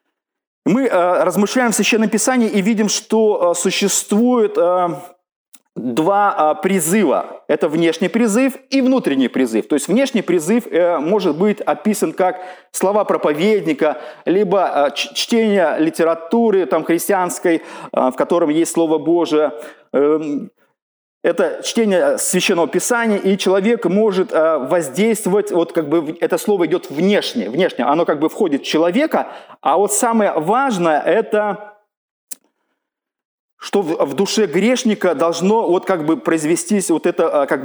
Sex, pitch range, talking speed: male, 165-220 Hz, 120 wpm